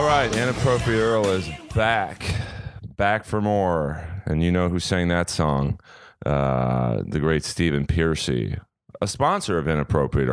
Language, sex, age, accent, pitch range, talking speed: English, male, 30-49, American, 70-90 Hz, 145 wpm